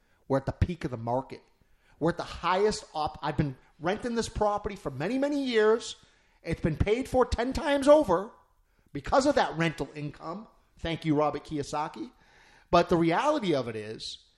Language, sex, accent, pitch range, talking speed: English, male, American, 140-205 Hz, 180 wpm